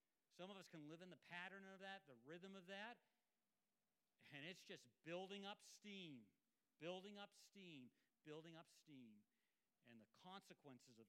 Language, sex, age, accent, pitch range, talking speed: English, male, 50-69, American, 150-195 Hz, 160 wpm